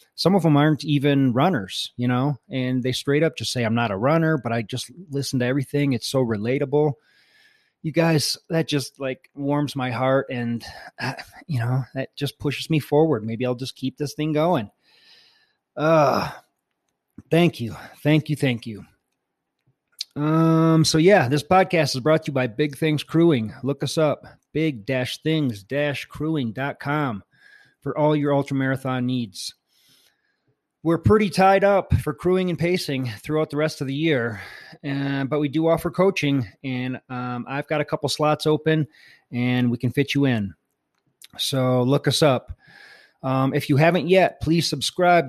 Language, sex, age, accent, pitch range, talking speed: English, male, 30-49, American, 130-155 Hz, 165 wpm